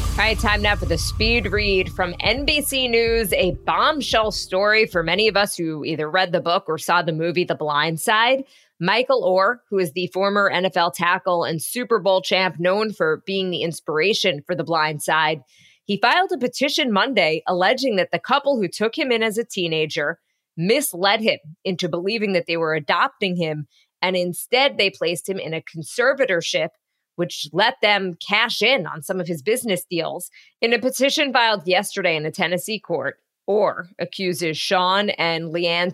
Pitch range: 165-205 Hz